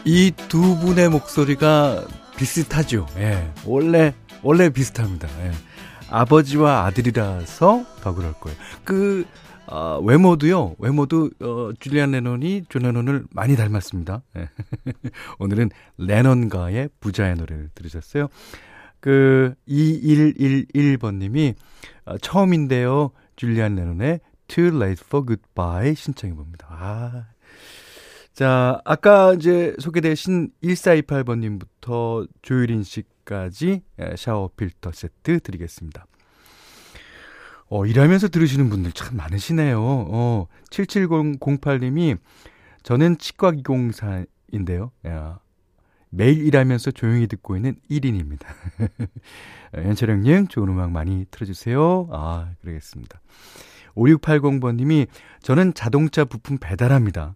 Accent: native